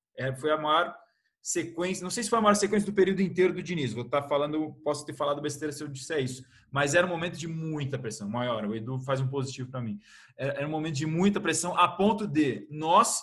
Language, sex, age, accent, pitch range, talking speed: Portuguese, male, 20-39, Brazilian, 130-170 Hz, 250 wpm